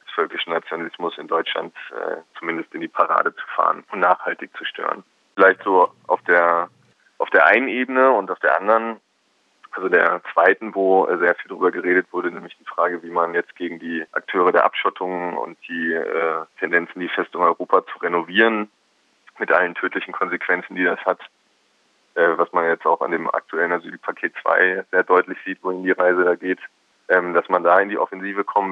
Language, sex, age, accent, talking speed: German, male, 20-39, German, 185 wpm